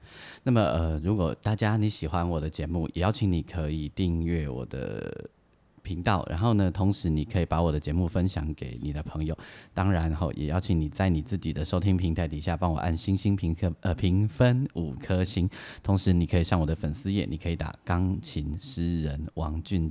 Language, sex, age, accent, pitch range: Chinese, male, 30-49, native, 80-100 Hz